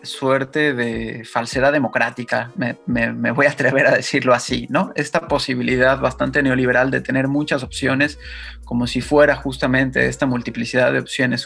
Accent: Mexican